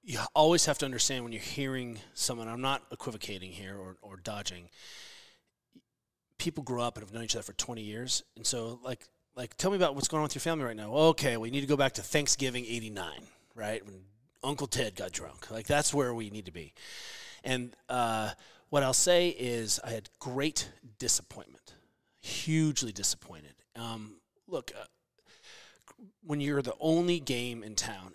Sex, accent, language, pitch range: male, American, English, 110-140 Hz